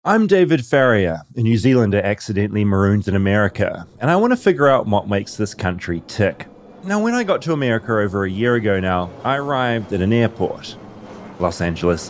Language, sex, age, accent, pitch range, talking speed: English, male, 30-49, Australian, 95-130 Hz, 195 wpm